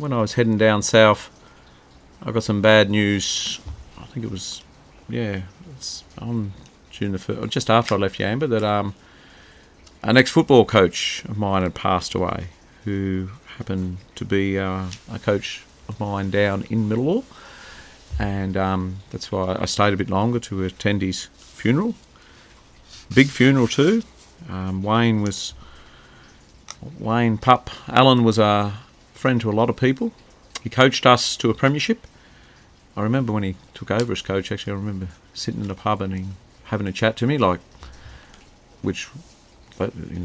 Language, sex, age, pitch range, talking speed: English, male, 40-59, 90-110 Hz, 160 wpm